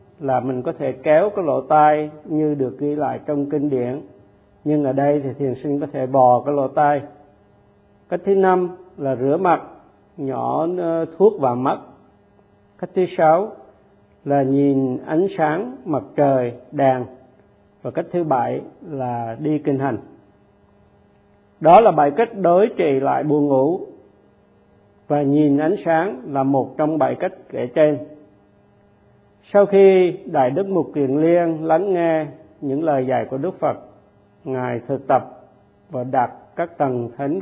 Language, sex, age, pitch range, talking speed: Vietnamese, male, 50-69, 125-170 Hz, 155 wpm